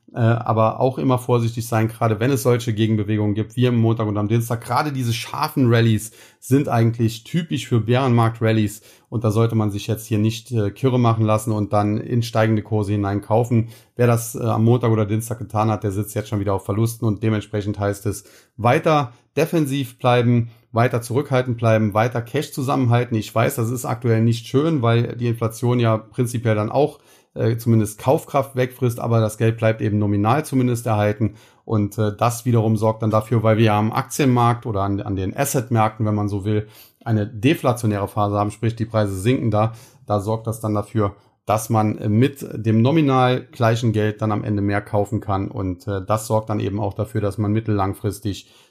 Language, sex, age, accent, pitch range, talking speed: German, male, 30-49, German, 105-120 Hz, 190 wpm